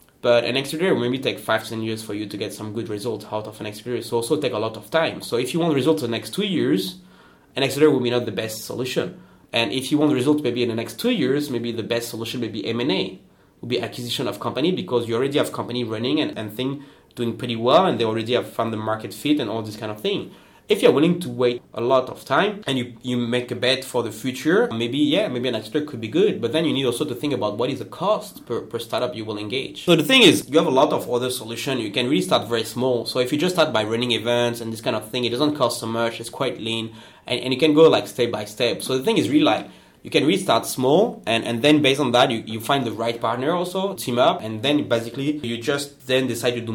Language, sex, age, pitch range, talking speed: English, male, 30-49, 115-135 Hz, 280 wpm